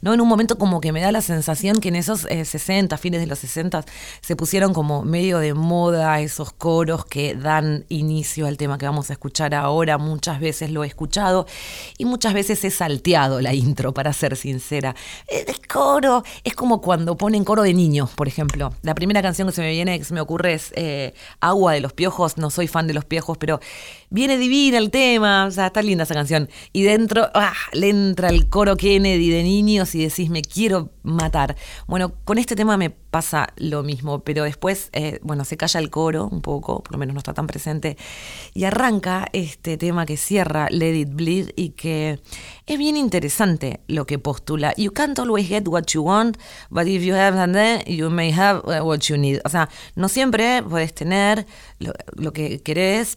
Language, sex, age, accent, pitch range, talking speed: Spanish, female, 30-49, Argentinian, 150-195 Hz, 205 wpm